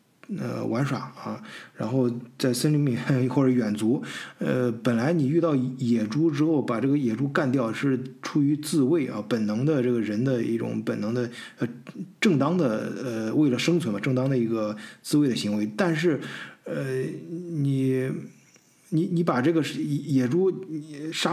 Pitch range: 125-170 Hz